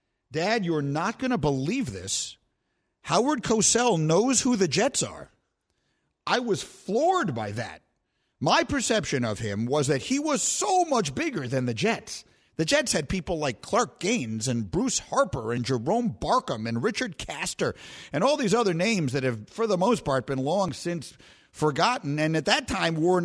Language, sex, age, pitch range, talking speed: English, male, 50-69, 125-185 Hz, 180 wpm